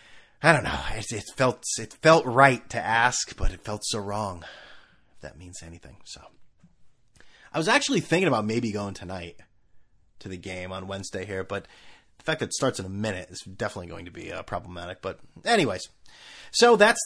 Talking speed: 195 wpm